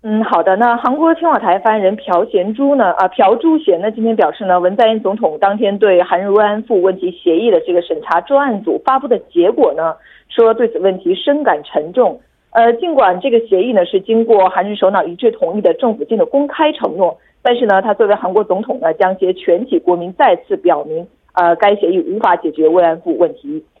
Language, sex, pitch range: Korean, female, 180-285 Hz